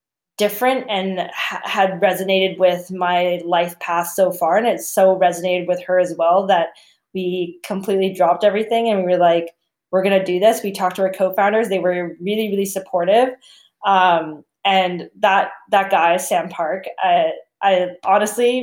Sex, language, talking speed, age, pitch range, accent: female, English, 170 wpm, 20-39, 180-220 Hz, American